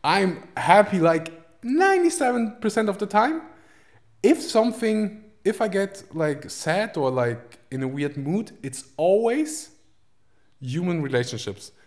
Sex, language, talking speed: male, English, 120 wpm